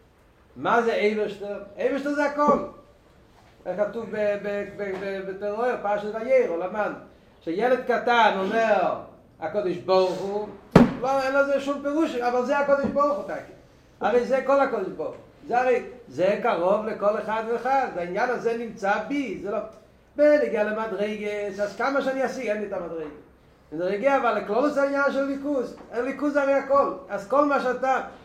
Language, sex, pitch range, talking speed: Hebrew, male, 205-265 Hz, 155 wpm